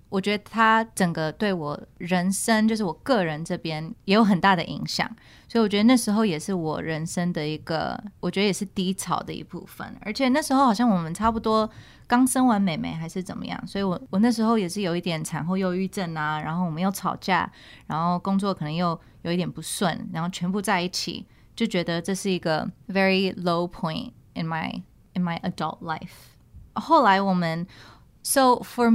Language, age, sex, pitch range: Chinese, 20-39, female, 170-220 Hz